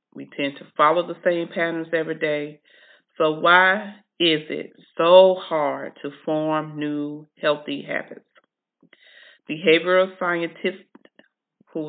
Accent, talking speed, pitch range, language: American, 115 wpm, 155-175 Hz, English